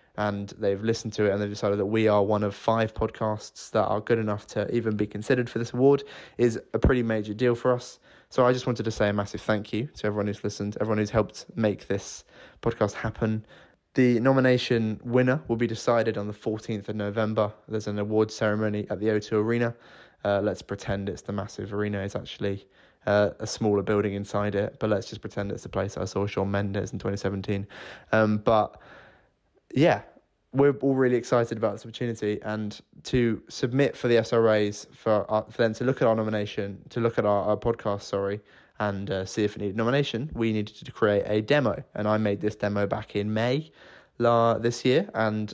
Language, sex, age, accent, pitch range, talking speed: English, male, 20-39, British, 105-115 Hz, 210 wpm